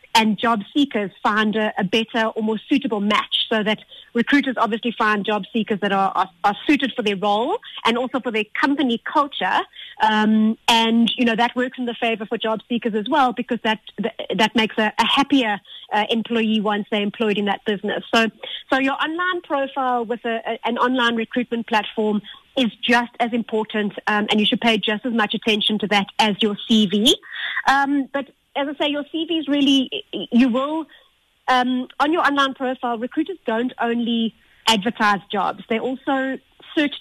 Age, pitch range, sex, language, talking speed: 30-49, 215-255 Hz, female, English, 185 wpm